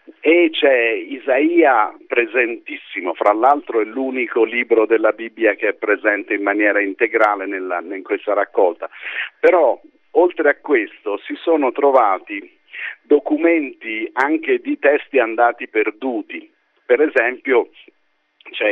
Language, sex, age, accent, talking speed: Italian, male, 50-69, native, 115 wpm